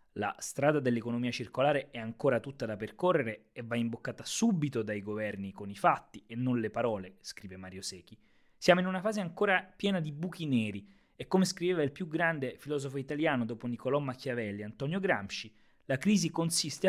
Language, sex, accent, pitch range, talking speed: Italian, male, native, 110-150 Hz, 180 wpm